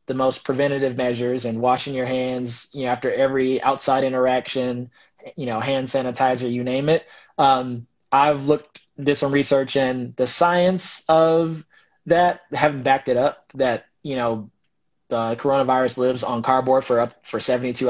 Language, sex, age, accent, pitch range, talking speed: English, male, 20-39, American, 125-140 Hz, 170 wpm